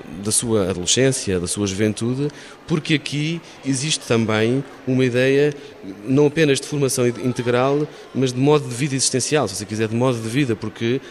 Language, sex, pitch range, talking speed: Portuguese, male, 110-135 Hz, 165 wpm